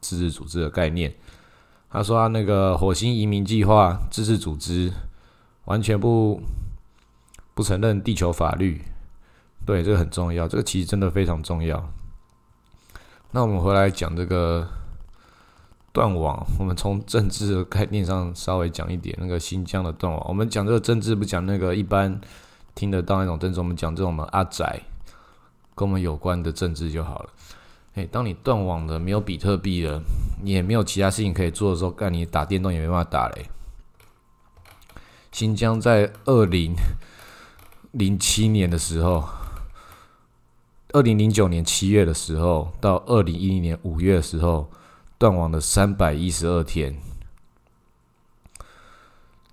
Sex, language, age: male, Chinese, 20-39